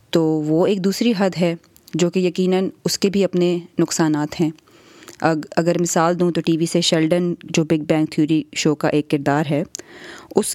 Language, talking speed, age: Urdu, 190 wpm, 30-49